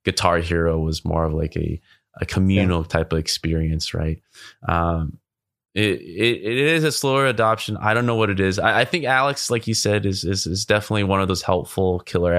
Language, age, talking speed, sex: English, 20-39, 210 wpm, male